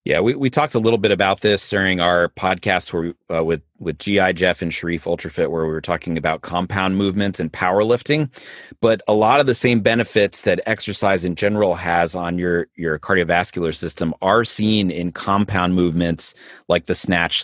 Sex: male